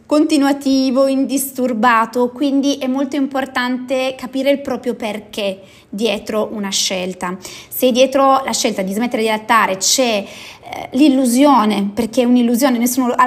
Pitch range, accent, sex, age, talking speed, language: 220-285 Hz, native, female, 20-39, 130 wpm, Italian